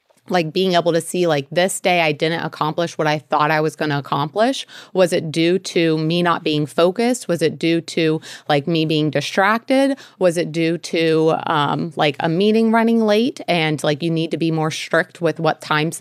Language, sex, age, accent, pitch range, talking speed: English, female, 30-49, American, 155-185 Hz, 210 wpm